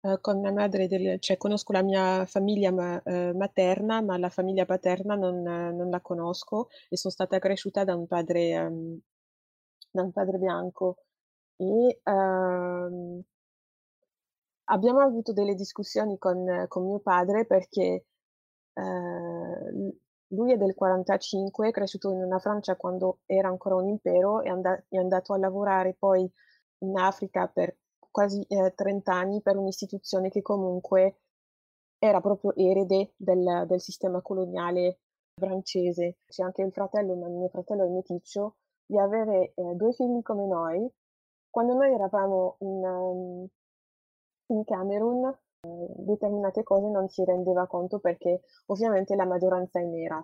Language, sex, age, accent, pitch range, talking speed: Italian, female, 20-39, native, 180-200 Hz, 145 wpm